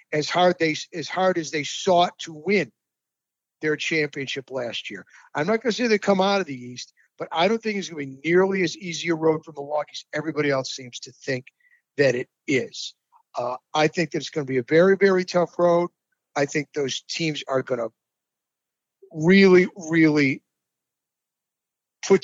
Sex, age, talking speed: male, 50-69, 190 wpm